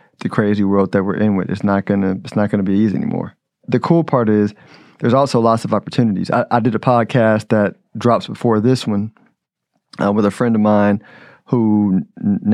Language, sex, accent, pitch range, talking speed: English, male, American, 105-125 Hz, 205 wpm